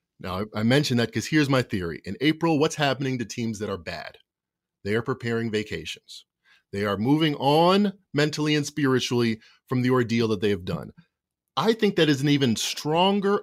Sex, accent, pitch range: male, American, 115-150 Hz